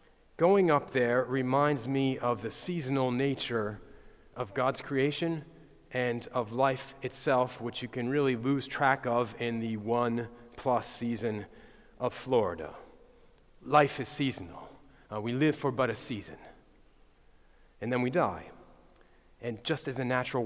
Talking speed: 140 wpm